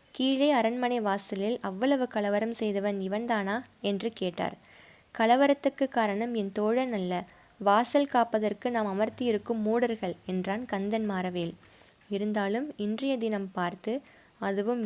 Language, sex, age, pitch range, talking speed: Tamil, female, 20-39, 195-235 Hz, 110 wpm